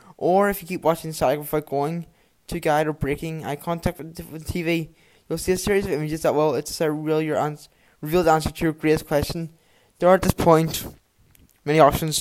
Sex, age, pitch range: male, 10-29, 145-165 Hz